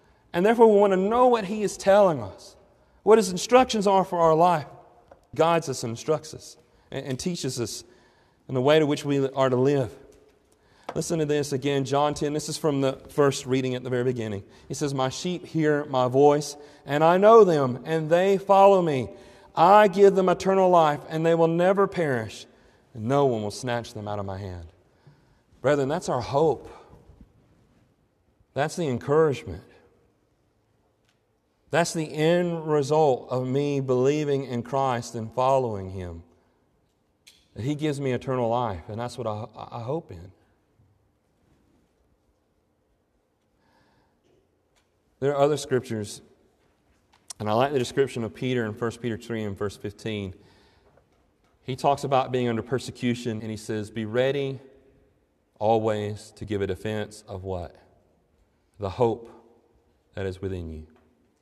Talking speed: 155 wpm